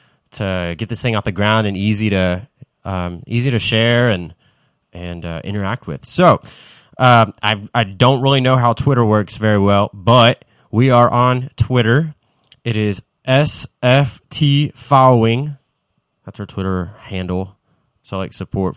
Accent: American